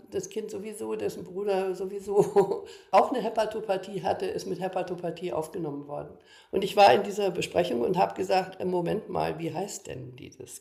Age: 50-69